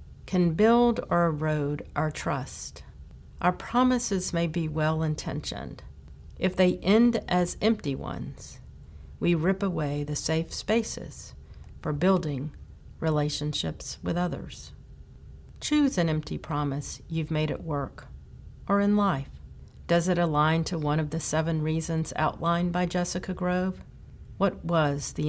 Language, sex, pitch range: English, female, 145-180 Hz